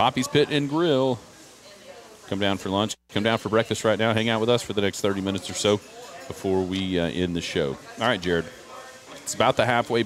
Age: 40-59